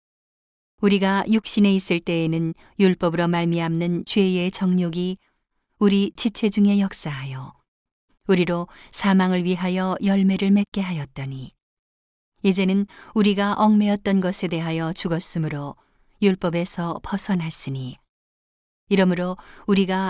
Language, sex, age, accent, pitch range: Korean, female, 40-59, native, 165-200 Hz